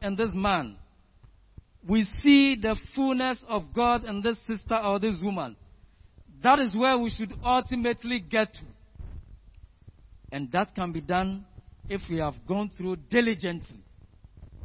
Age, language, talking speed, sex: 50-69, English, 140 wpm, male